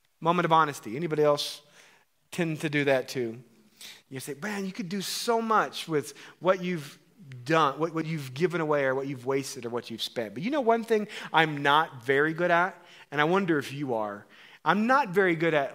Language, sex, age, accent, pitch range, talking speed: English, male, 30-49, American, 135-175 Hz, 215 wpm